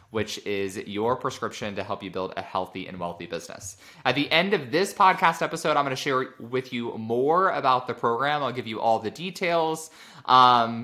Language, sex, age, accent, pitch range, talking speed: English, male, 20-39, American, 105-145 Hz, 205 wpm